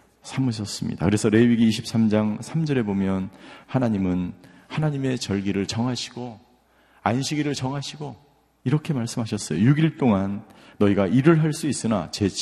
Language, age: Korean, 40-59